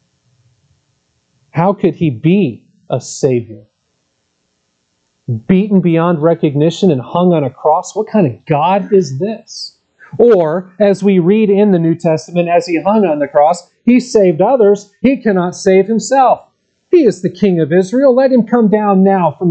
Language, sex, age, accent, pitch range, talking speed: English, male, 40-59, American, 135-190 Hz, 165 wpm